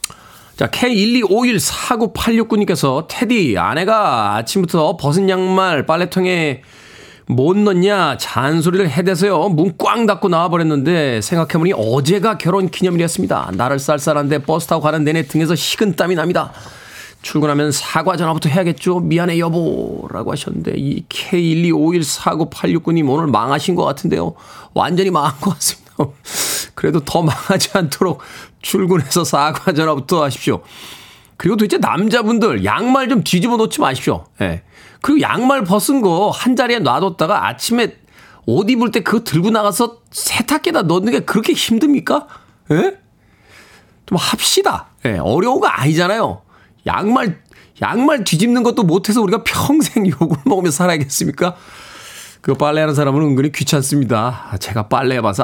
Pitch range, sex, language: 145-210 Hz, male, Korean